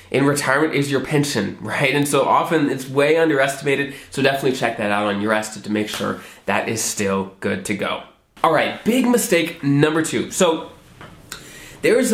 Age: 20-39